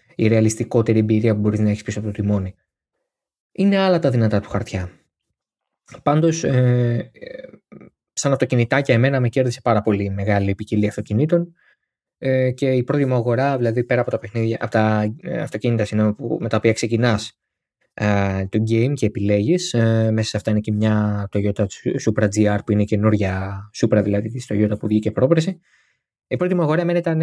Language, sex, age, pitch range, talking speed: Greek, male, 20-39, 105-125 Hz, 180 wpm